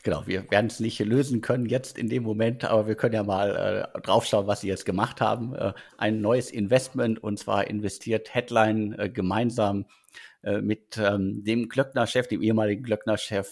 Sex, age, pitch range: male, 50-69, 100-120 Hz